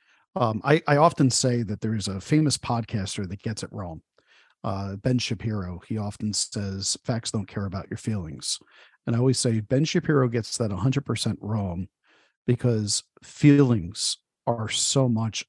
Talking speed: 170 wpm